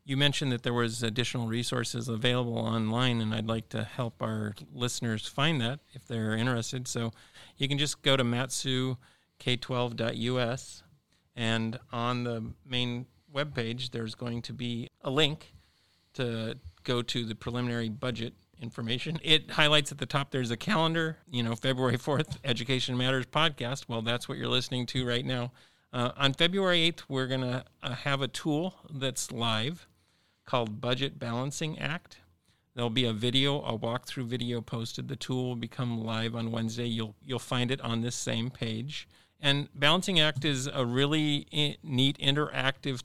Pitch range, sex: 115-135 Hz, male